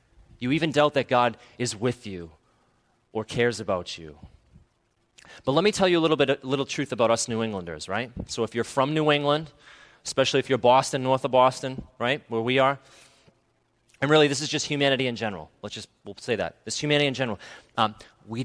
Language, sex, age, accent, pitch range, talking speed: English, male, 30-49, American, 110-130 Hz, 210 wpm